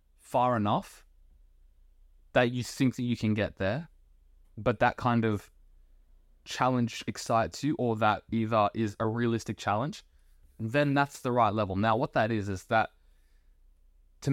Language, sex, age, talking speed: English, male, 20-39, 150 wpm